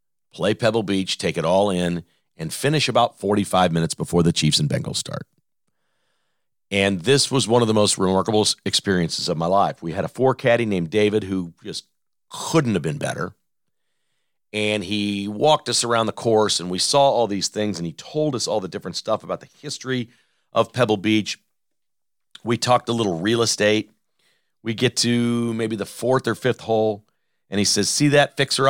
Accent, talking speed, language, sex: American, 190 wpm, English, male